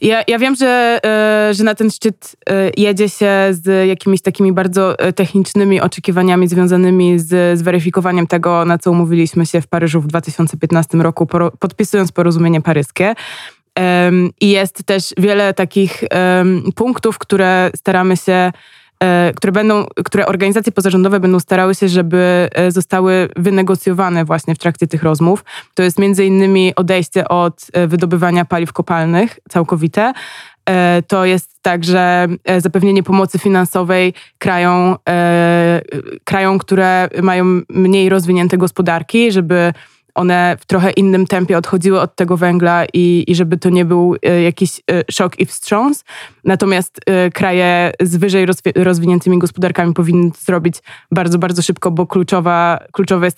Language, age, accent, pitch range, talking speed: Polish, 20-39, native, 175-195 Hz, 125 wpm